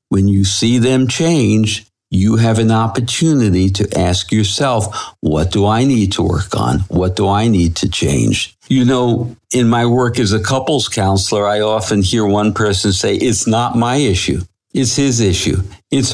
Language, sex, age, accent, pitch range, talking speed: English, male, 60-79, American, 100-130 Hz, 180 wpm